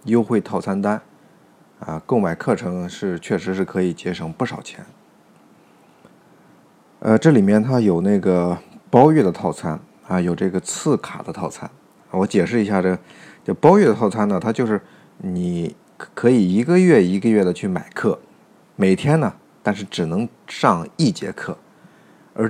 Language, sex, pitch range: Chinese, male, 90-130 Hz